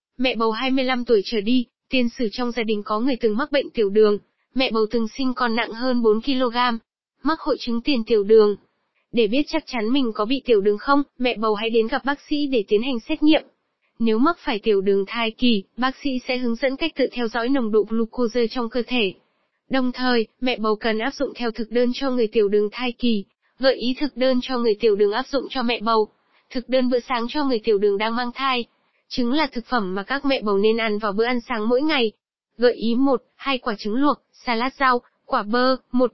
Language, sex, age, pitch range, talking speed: Vietnamese, female, 20-39, 225-265 Hz, 240 wpm